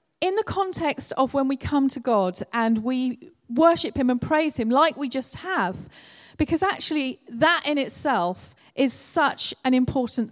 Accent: British